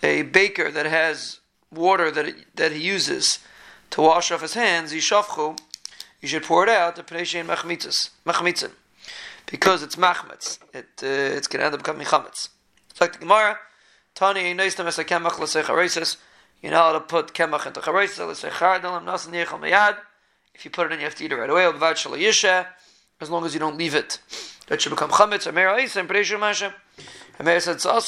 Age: 30-49